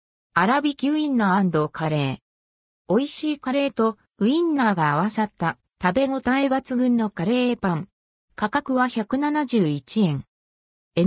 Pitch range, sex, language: 165-260 Hz, female, Japanese